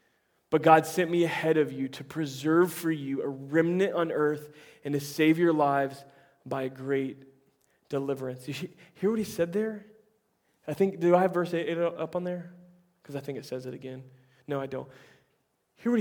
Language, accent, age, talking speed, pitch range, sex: English, American, 20-39, 195 wpm, 145-190 Hz, male